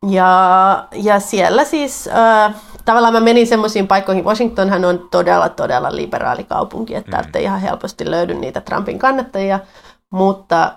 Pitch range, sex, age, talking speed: 185-225 Hz, female, 30-49, 135 wpm